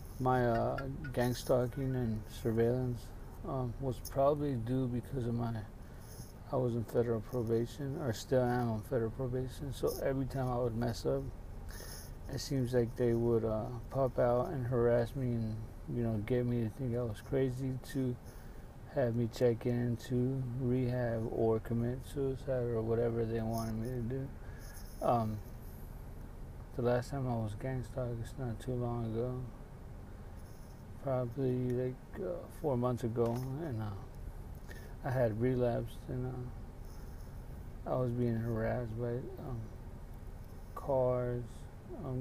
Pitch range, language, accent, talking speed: 110-125 Hz, English, American, 150 wpm